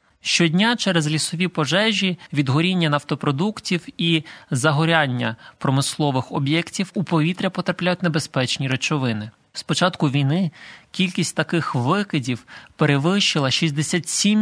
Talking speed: 95 wpm